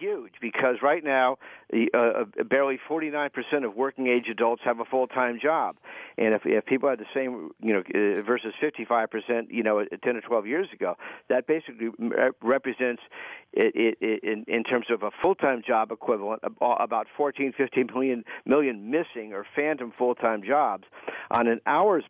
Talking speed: 170 wpm